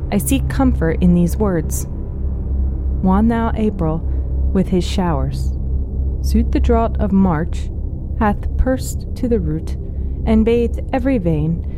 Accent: American